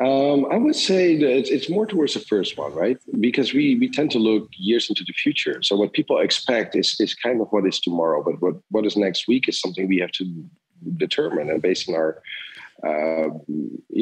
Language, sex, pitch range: English, male, 90-125 Hz